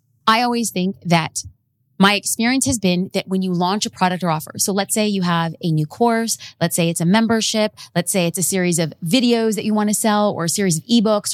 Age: 30-49